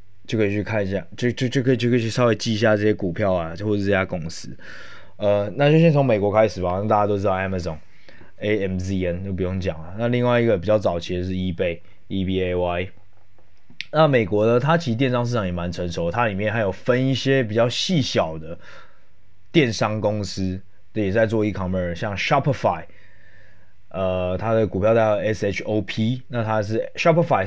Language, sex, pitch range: Chinese, male, 95-120 Hz